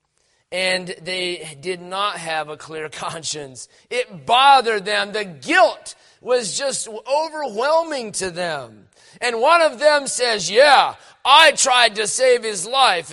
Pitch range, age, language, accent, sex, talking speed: 185-275 Hz, 30-49, English, American, male, 135 wpm